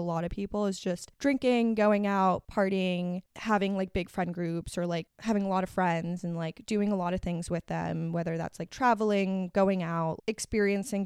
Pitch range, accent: 185-230 Hz, American